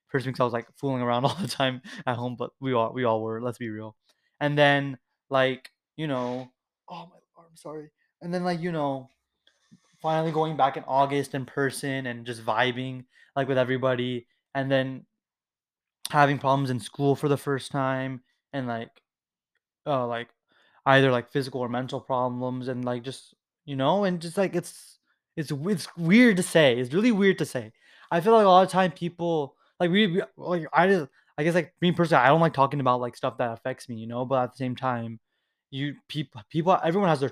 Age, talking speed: 20-39, 210 wpm